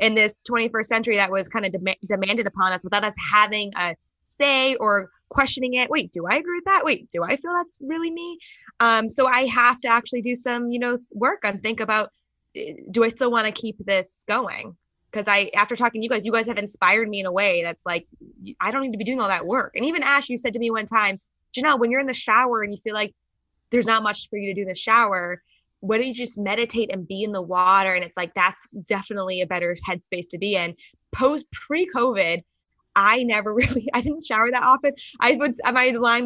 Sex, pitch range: female, 185-245 Hz